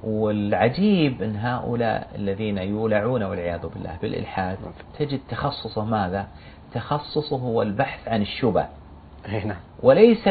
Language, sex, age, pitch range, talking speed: Arabic, male, 40-59, 90-125 Hz, 100 wpm